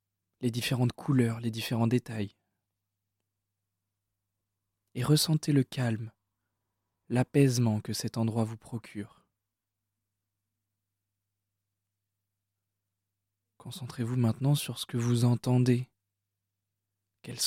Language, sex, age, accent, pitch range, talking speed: French, male, 20-39, French, 100-125 Hz, 80 wpm